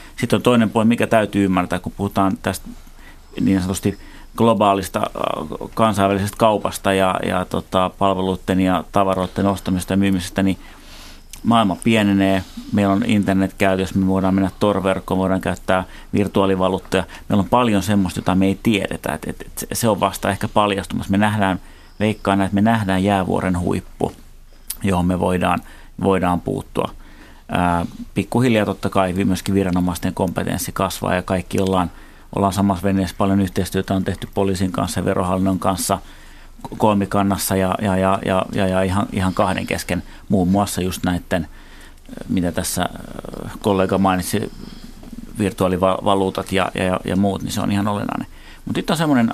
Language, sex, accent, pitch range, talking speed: Finnish, male, native, 95-100 Hz, 145 wpm